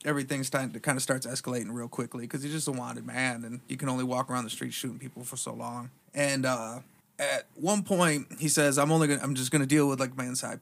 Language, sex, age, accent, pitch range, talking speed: English, male, 30-49, American, 130-150 Hz, 260 wpm